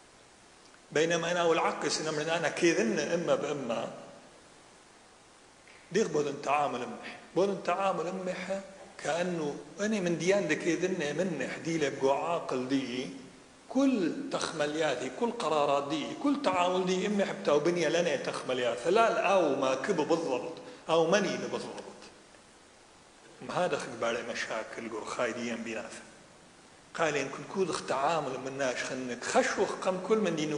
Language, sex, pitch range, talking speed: English, male, 140-190 Hz, 125 wpm